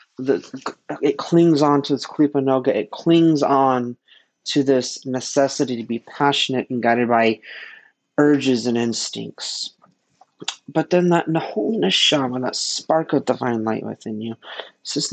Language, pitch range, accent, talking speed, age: English, 125-145 Hz, American, 145 wpm, 40-59